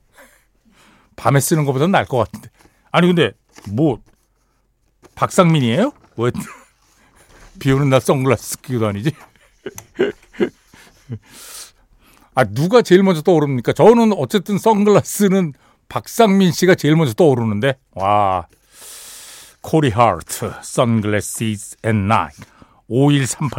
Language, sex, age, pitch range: Korean, male, 60-79, 120-185 Hz